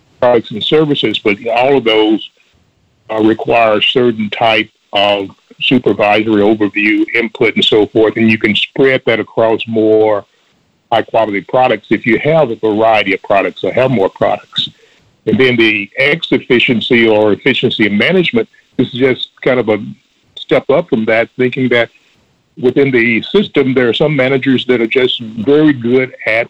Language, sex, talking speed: English, male, 165 wpm